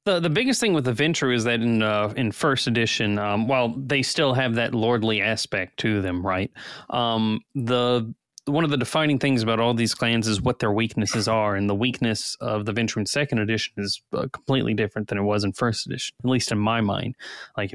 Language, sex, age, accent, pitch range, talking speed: English, male, 20-39, American, 105-120 Hz, 225 wpm